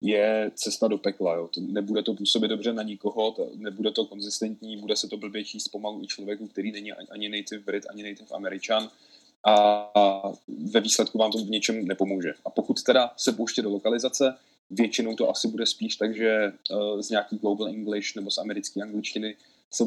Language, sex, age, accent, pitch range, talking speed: Czech, male, 20-39, native, 100-110 Hz, 185 wpm